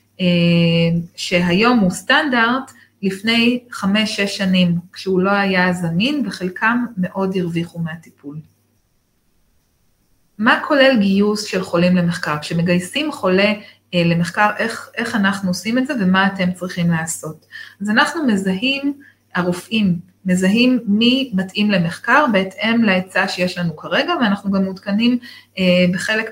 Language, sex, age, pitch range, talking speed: Hebrew, female, 30-49, 175-210 Hz, 120 wpm